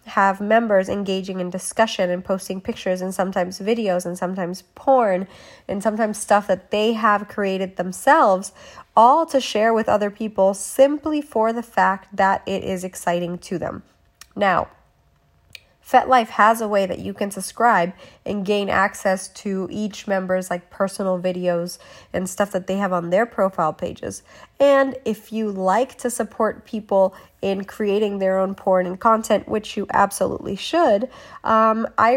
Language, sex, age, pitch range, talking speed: English, female, 20-39, 190-235 Hz, 160 wpm